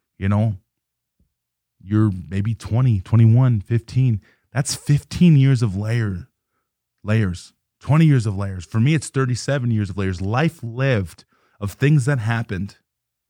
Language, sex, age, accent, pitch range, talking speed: English, male, 20-39, American, 100-125 Hz, 135 wpm